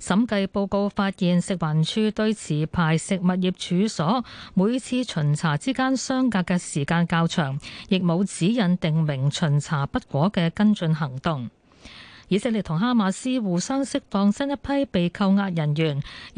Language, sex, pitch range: Chinese, female, 165-220 Hz